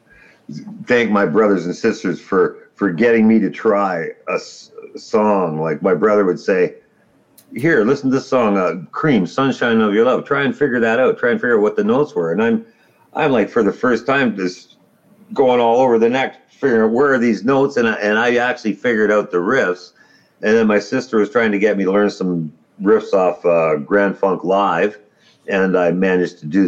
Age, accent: 50-69, American